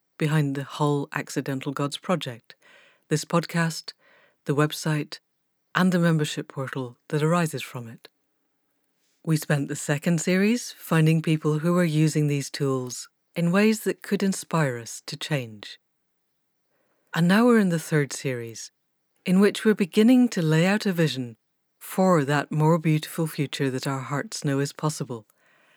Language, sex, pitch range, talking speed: English, female, 145-190 Hz, 150 wpm